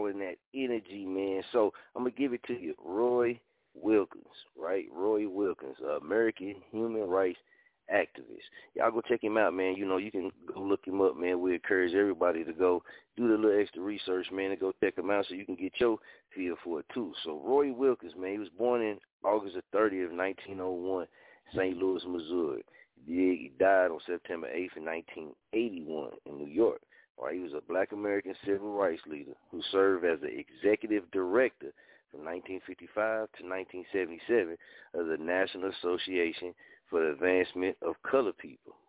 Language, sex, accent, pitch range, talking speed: English, male, American, 95-140 Hz, 175 wpm